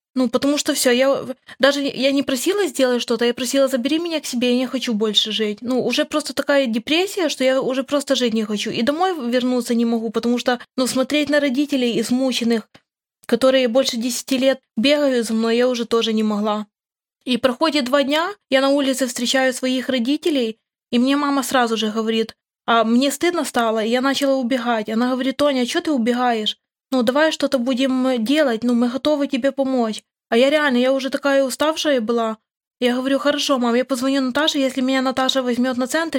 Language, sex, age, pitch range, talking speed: Russian, female, 20-39, 240-275 Hz, 200 wpm